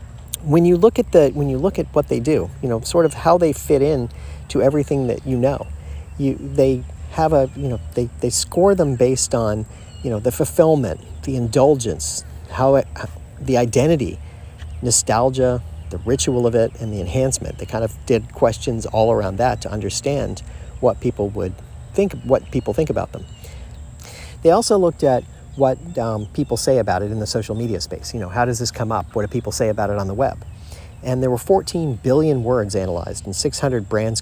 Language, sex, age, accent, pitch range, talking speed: English, male, 40-59, American, 100-135 Hz, 200 wpm